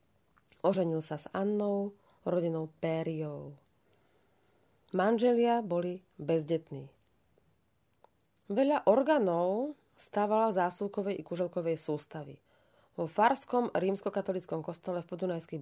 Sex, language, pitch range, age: female, Slovak, 165-205 Hz, 30-49